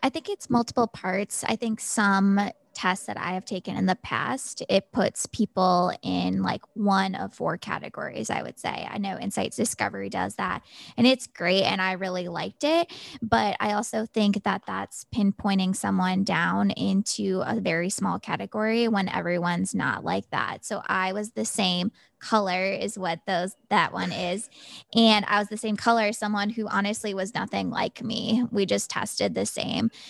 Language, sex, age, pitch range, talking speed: English, female, 20-39, 190-230 Hz, 185 wpm